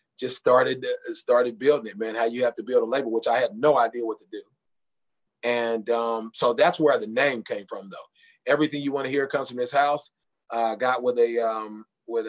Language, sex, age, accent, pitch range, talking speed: English, male, 30-49, American, 125-165 Hz, 225 wpm